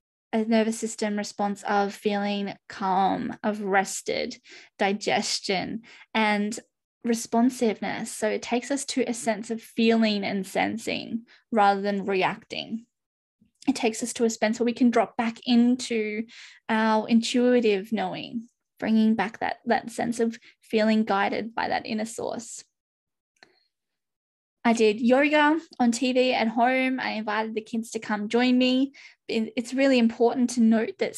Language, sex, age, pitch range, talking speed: English, female, 10-29, 220-245 Hz, 140 wpm